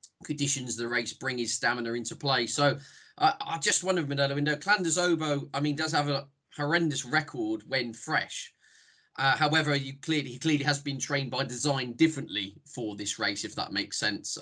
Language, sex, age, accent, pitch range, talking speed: English, male, 20-39, British, 115-150 Hz, 185 wpm